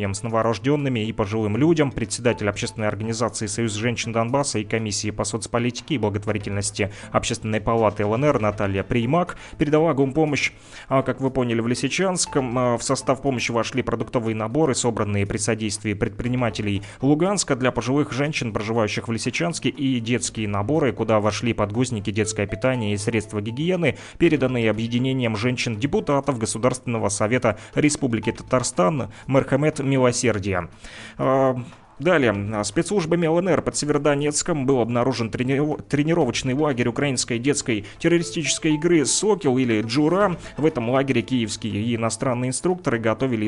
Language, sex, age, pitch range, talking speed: Russian, male, 30-49, 110-135 Hz, 125 wpm